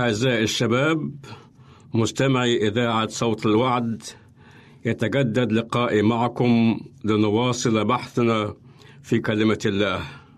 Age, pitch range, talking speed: 60-79, 115-135 Hz, 80 wpm